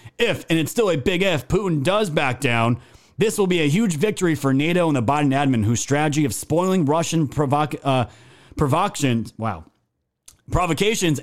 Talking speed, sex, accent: 160 wpm, male, American